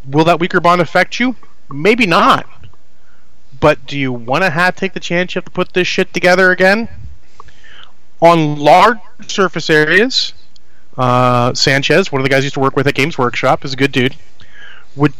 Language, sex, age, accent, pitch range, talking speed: English, male, 30-49, American, 130-180 Hz, 190 wpm